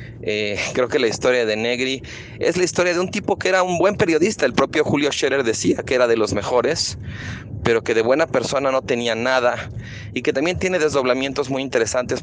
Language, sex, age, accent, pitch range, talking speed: Spanish, male, 30-49, Mexican, 110-135 Hz, 210 wpm